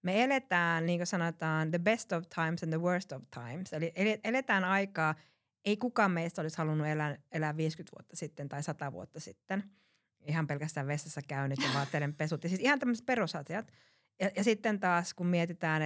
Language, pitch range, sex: Finnish, 145-180 Hz, female